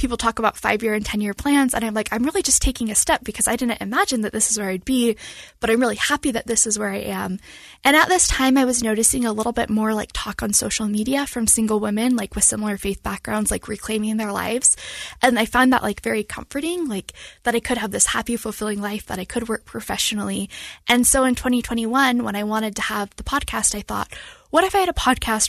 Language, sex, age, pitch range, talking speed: English, female, 10-29, 215-260 Hz, 250 wpm